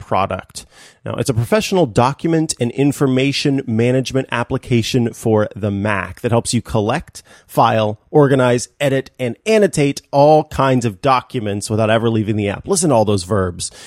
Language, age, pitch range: English, 30-49, 115-155 Hz